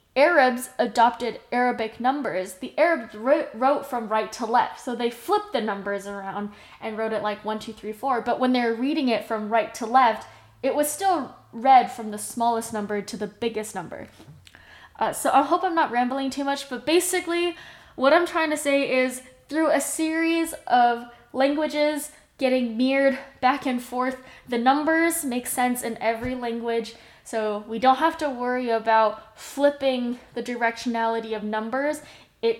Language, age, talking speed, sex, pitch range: English, 10-29, 170 wpm, female, 220-285 Hz